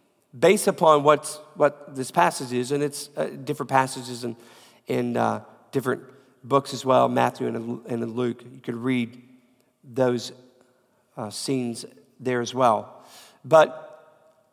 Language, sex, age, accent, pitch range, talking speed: English, male, 40-59, American, 125-165 Hz, 135 wpm